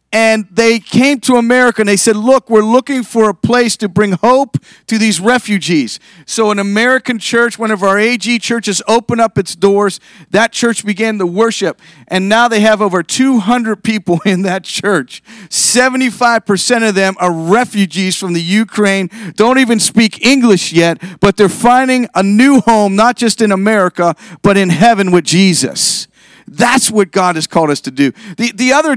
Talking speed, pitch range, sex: 180 wpm, 180-230 Hz, male